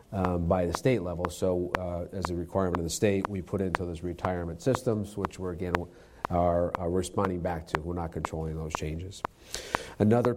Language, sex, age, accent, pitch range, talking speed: English, male, 40-59, American, 90-105 Hz, 190 wpm